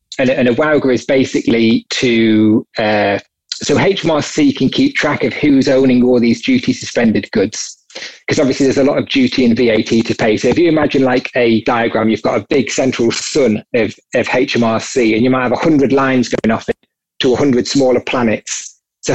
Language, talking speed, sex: English, 200 wpm, male